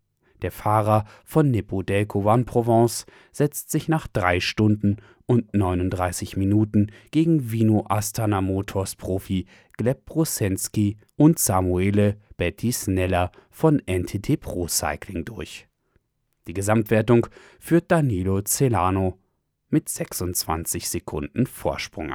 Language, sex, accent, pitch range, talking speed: German, male, German, 95-125 Hz, 105 wpm